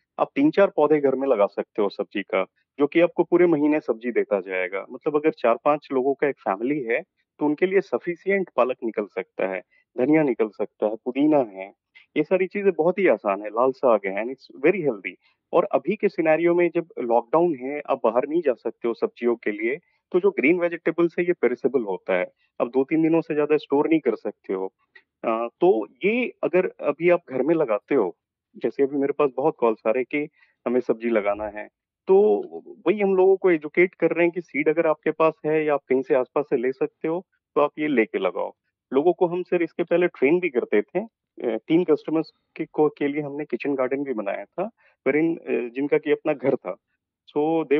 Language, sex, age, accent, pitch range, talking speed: Hindi, male, 30-49, native, 140-175 Hz, 215 wpm